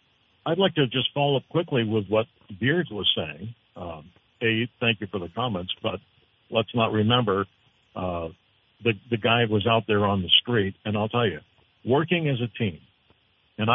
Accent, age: American, 60-79